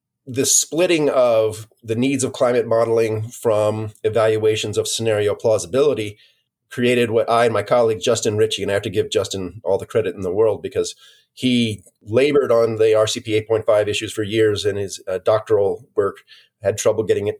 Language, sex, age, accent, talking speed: English, male, 40-59, American, 180 wpm